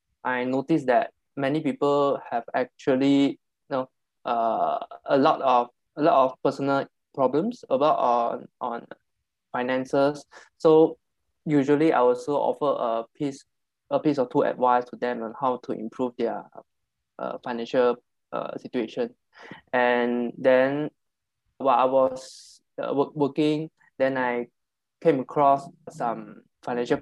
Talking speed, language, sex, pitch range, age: 130 wpm, English, male, 125-140 Hz, 20-39